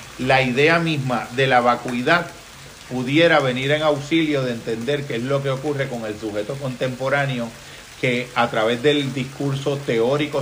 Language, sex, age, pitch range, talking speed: Spanish, male, 40-59, 120-140 Hz, 155 wpm